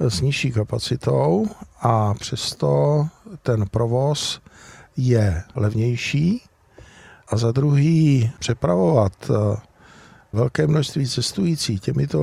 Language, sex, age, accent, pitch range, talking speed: Czech, male, 50-69, native, 115-140 Hz, 85 wpm